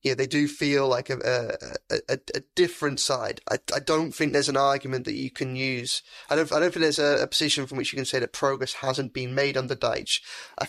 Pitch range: 135-150 Hz